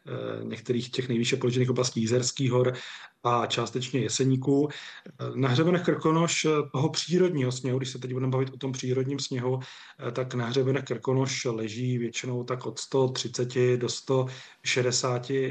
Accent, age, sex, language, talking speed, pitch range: native, 30-49, male, Czech, 140 wpm, 120-135 Hz